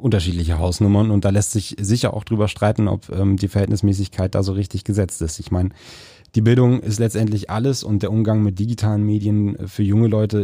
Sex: male